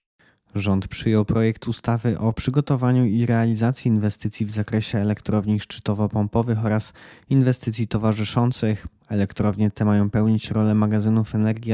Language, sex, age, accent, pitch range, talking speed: Polish, male, 20-39, native, 105-115 Hz, 120 wpm